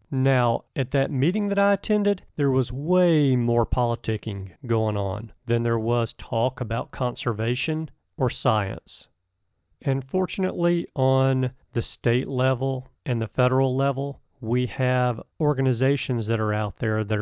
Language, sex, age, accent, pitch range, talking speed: English, male, 40-59, American, 110-135 Hz, 140 wpm